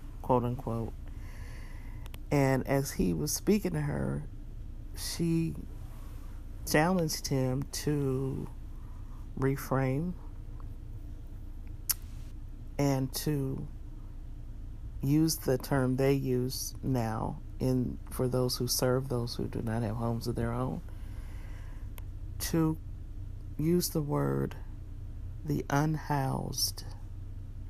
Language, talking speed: English, 90 wpm